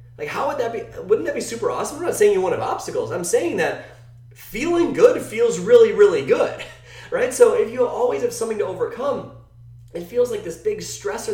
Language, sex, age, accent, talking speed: English, male, 30-49, American, 220 wpm